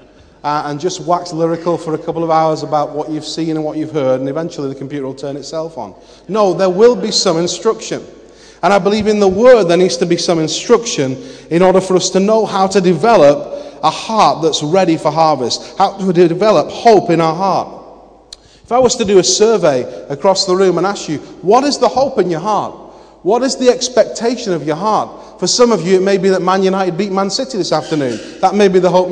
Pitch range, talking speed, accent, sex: 165-215 Hz, 235 wpm, British, male